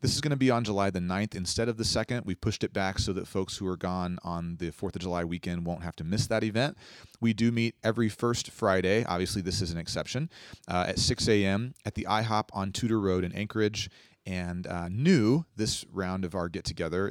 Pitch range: 90-110 Hz